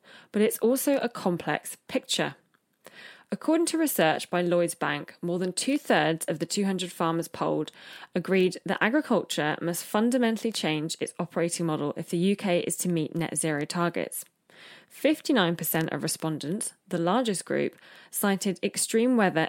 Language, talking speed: English, 150 wpm